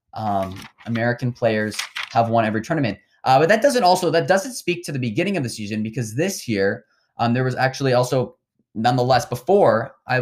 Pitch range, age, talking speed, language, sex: 115-145 Hz, 20-39, 190 wpm, English, male